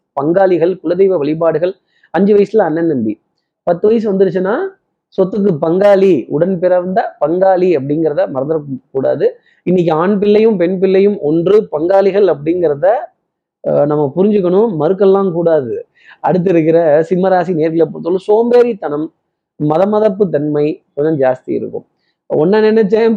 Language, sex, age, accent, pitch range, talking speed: Tamil, male, 20-39, native, 160-205 Hz, 115 wpm